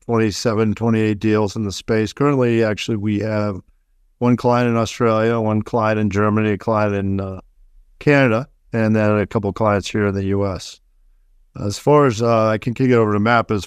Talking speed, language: 200 wpm, English